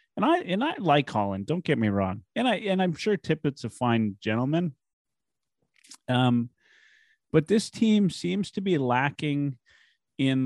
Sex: male